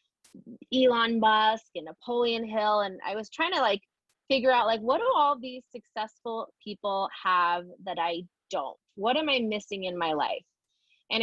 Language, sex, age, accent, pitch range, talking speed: English, female, 20-39, American, 200-245 Hz, 170 wpm